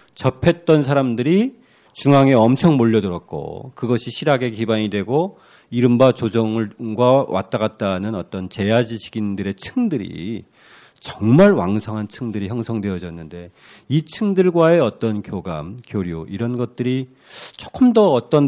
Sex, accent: male, native